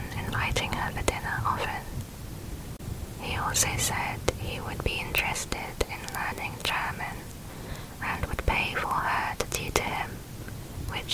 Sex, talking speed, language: female, 130 wpm, English